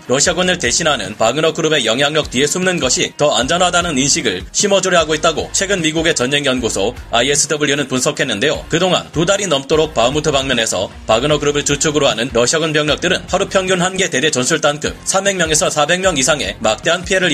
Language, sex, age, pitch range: Korean, male, 30-49, 145-180 Hz